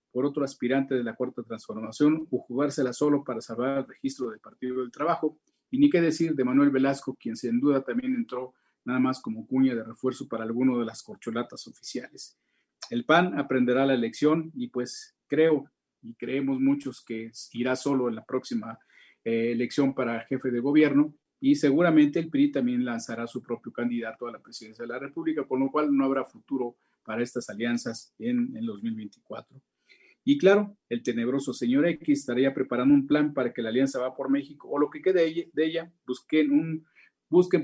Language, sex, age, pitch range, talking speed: Spanish, male, 40-59, 125-155 Hz, 190 wpm